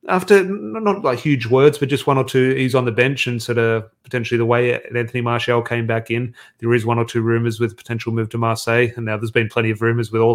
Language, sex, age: English, male, 30-49